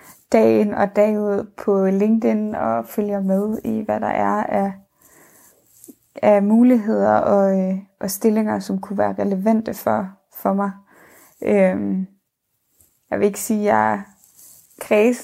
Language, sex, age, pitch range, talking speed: Danish, female, 20-39, 190-220 Hz, 130 wpm